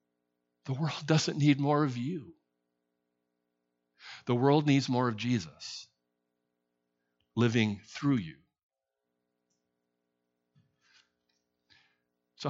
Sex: male